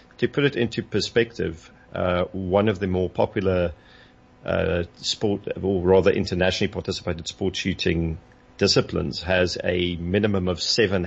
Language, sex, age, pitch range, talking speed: English, male, 40-59, 85-100 Hz, 135 wpm